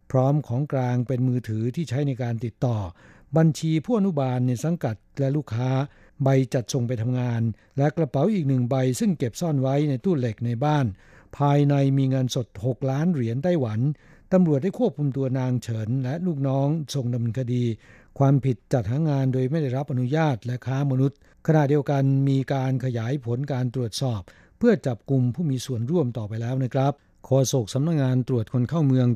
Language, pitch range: Thai, 120-145 Hz